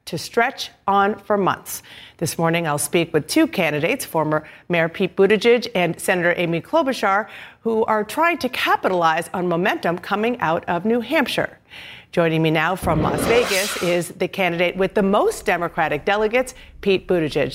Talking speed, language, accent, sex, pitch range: 165 wpm, English, American, female, 165-205 Hz